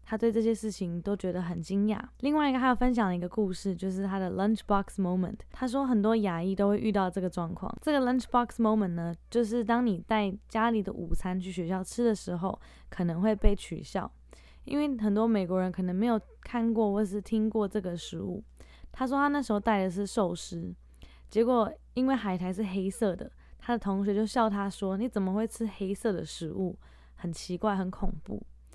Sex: female